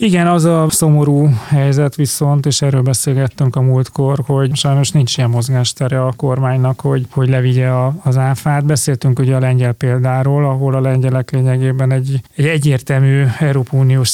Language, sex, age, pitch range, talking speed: Hungarian, male, 30-49, 130-145 Hz, 160 wpm